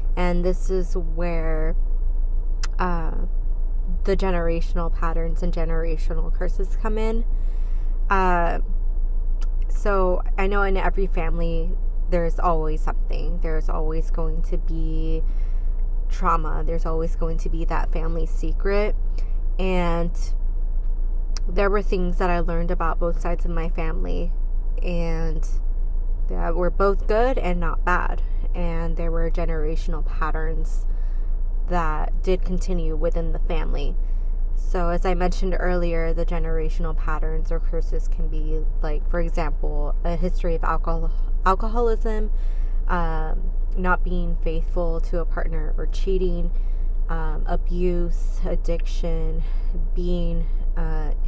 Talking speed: 120 wpm